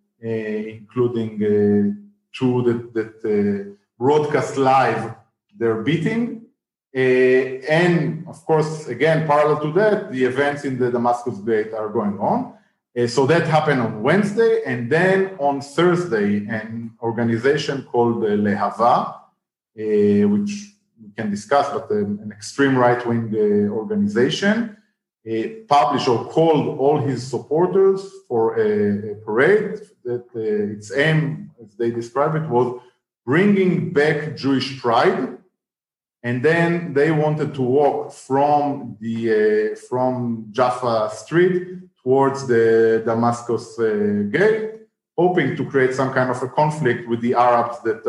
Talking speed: 135 wpm